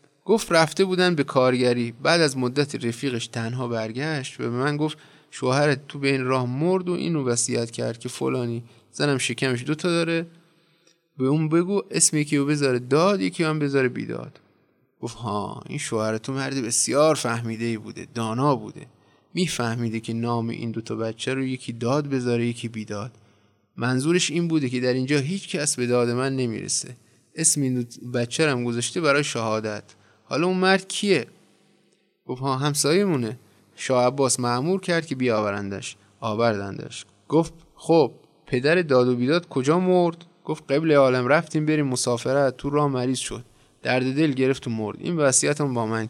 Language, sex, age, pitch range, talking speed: Persian, male, 20-39, 115-150 Hz, 160 wpm